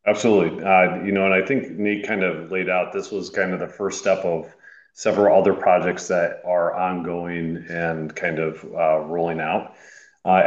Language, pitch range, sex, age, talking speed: English, 95-110 Hz, male, 40-59, 190 wpm